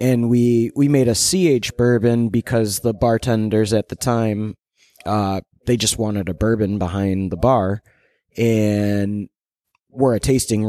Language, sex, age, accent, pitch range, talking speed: English, male, 20-39, American, 100-125 Hz, 145 wpm